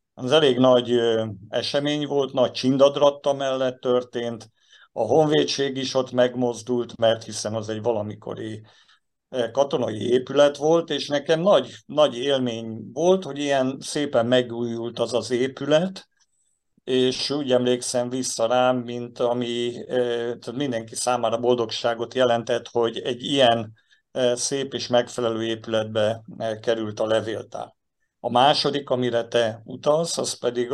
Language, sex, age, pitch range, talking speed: Hungarian, male, 50-69, 115-130 Hz, 125 wpm